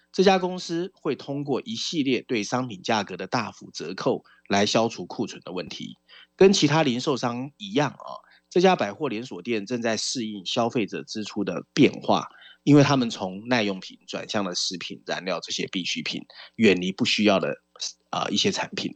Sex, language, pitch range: male, Chinese, 100-145 Hz